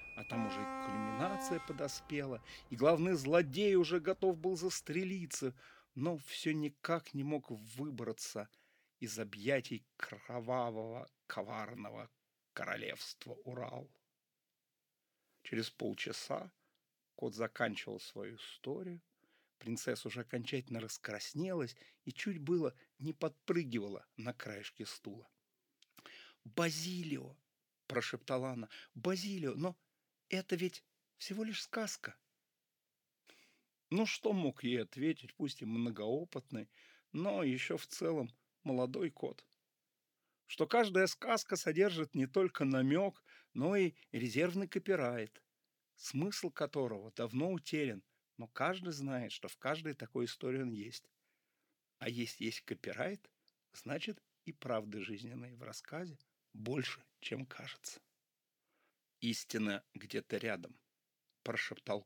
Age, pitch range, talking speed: 50-69, 120-180 Hz, 105 wpm